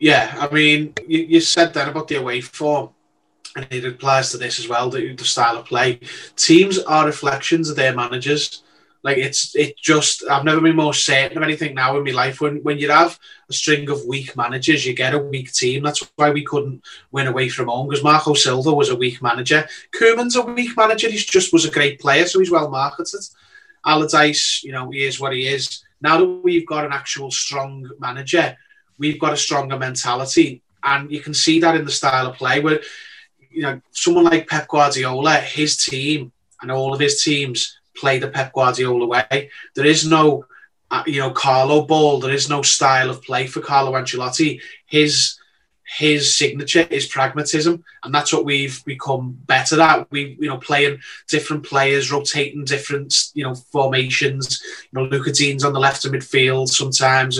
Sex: male